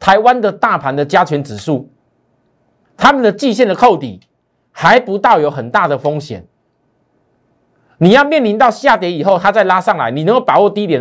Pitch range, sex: 135-195 Hz, male